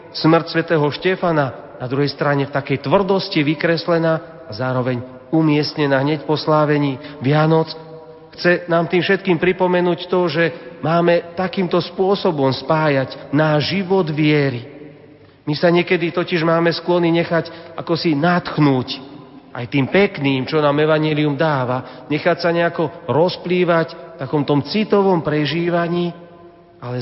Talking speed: 130 wpm